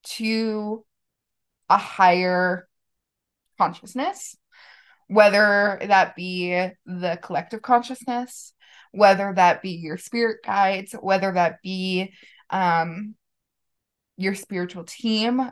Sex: female